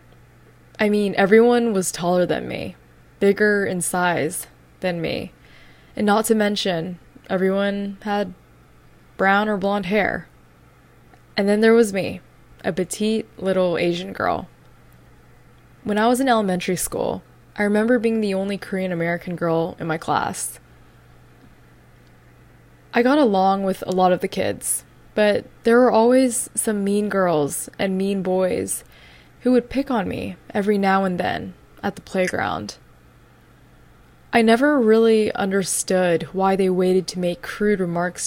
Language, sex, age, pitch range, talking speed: English, female, 10-29, 180-210 Hz, 145 wpm